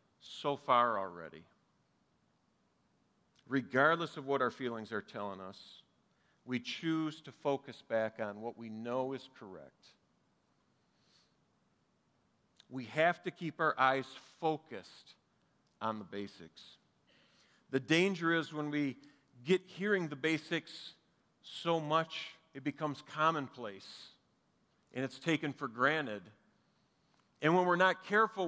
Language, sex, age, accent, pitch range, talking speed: English, male, 50-69, American, 130-165 Hz, 120 wpm